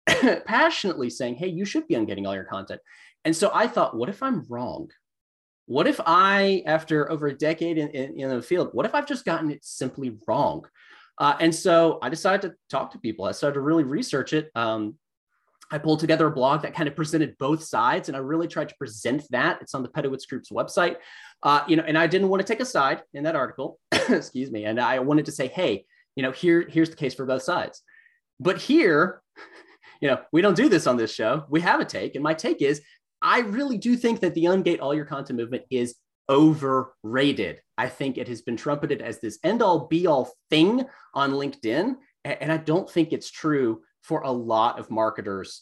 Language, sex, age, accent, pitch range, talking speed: English, male, 30-49, American, 130-175 Hz, 220 wpm